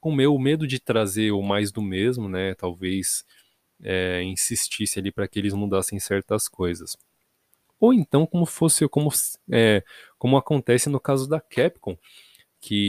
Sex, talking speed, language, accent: male, 155 wpm, Portuguese, Brazilian